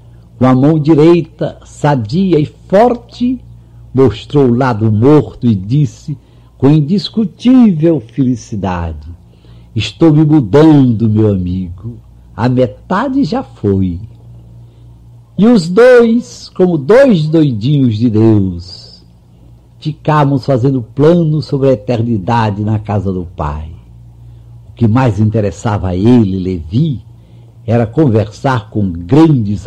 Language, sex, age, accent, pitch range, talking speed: Portuguese, male, 60-79, Brazilian, 105-150 Hz, 110 wpm